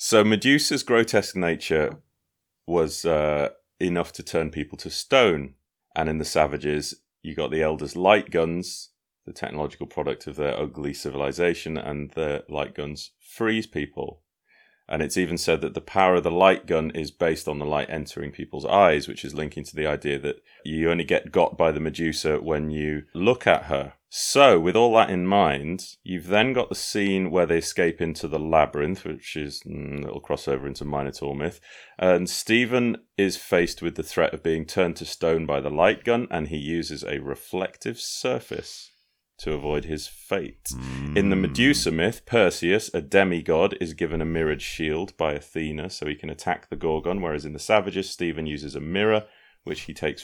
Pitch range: 75-95 Hz